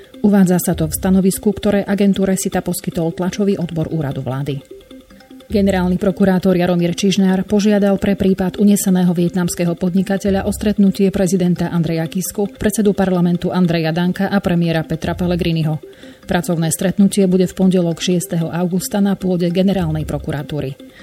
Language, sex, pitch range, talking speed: Slovak, female, 170-195 Hz, 135 wpm